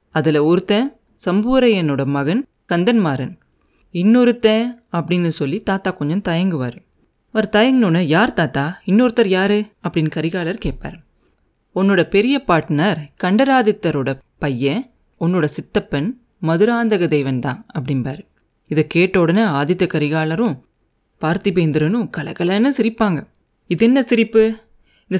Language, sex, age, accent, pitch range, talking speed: Tamil, female, 30-49, native, 160-225 Hz, 100 wpm